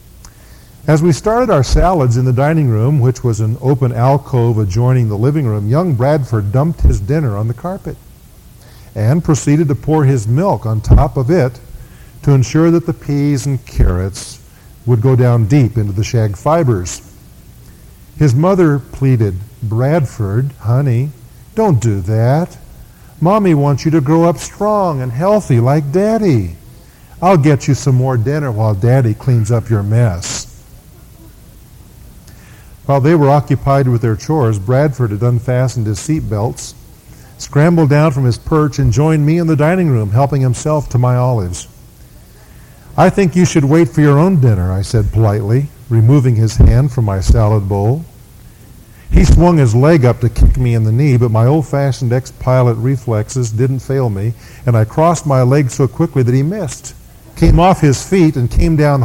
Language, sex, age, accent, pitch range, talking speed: English, male, 50-69, American, 115-150 Hz, 170 wpm